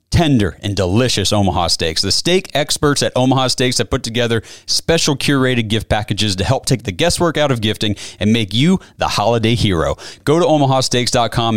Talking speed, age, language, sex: 180 wpm, 30-49, English, male